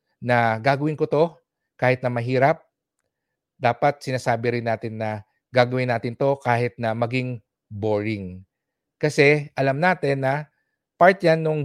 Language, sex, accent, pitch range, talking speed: English, male, Filipino, 115-140 Hz, 135 wpm